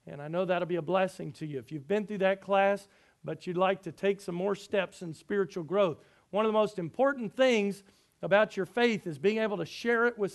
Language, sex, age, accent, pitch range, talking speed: English, male, 50-69, American, 155-195 Hz, 245 wpm